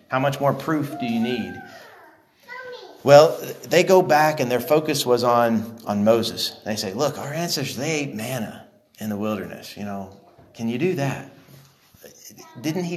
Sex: male